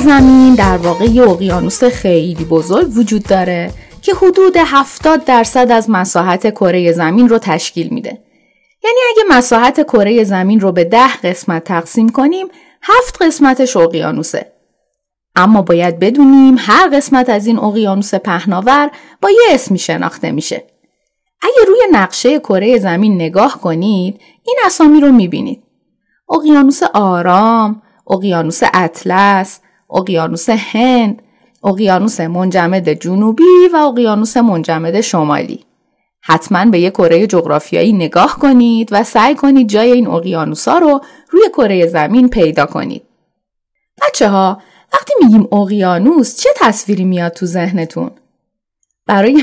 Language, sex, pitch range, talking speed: Persian, female, 185-270 Hz, 125 wpm